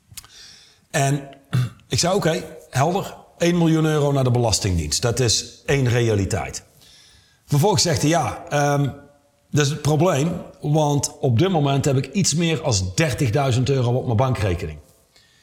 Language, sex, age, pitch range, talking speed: Dutch, male, 40-59, 110-140 Hz, 145 wpm